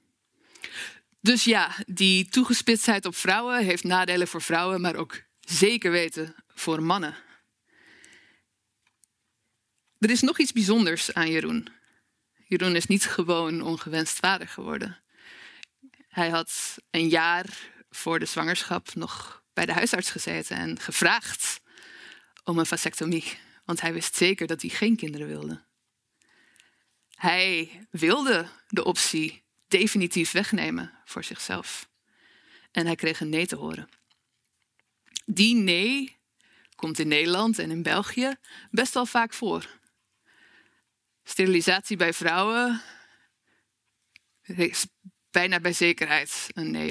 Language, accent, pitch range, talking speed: Dutch, Dutch, 165-215 Hz, 120 wpm